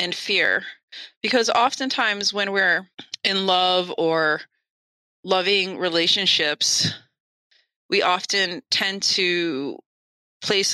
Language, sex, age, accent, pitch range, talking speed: English, female, 30-49, American, 165-195 Hz, 90 wpm